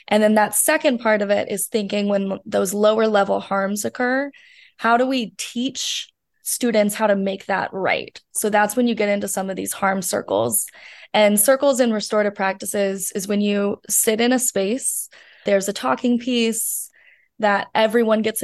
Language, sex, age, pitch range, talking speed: English, female, 20-39, 200-240 Hz, 180 wpm